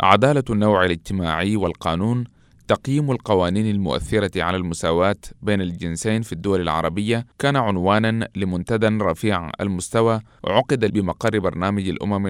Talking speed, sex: 110 wpm, male